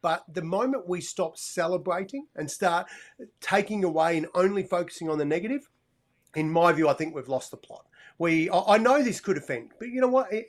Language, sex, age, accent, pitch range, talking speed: English, male, 40-59, Australian, 165-220 Hz, 200 wpm